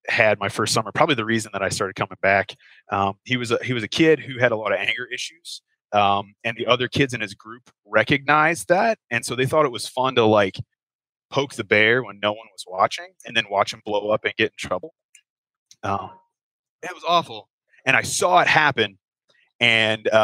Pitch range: 105-125 Hz